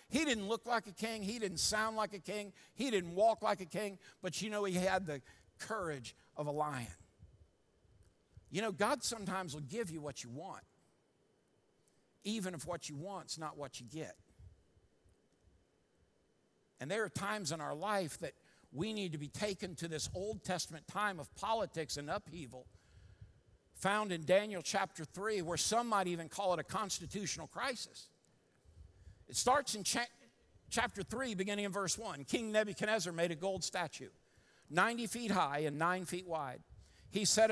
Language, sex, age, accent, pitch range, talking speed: English, male, 60-79, American, 145-200 Hz, 170 wpm